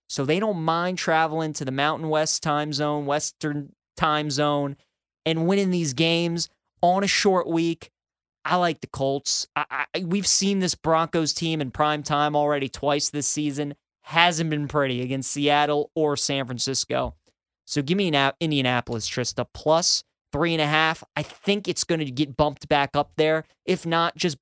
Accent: American